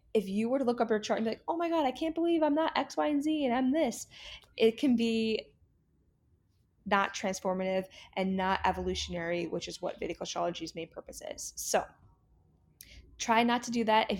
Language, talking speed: English, 205 wpm